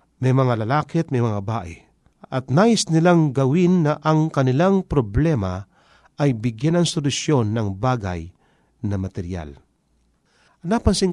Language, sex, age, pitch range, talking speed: Filipino, male, 40-59, 110-150 Hz, 135 wpm